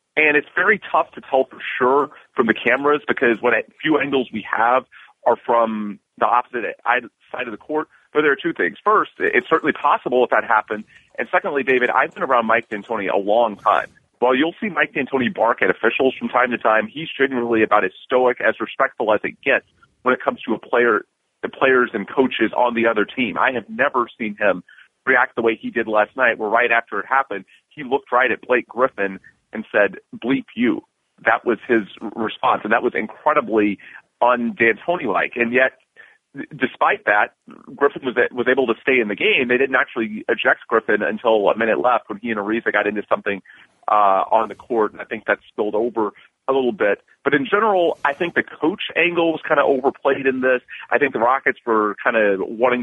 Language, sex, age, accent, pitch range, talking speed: English, male, 30-49, American, 110-140 Hz, 210 wpm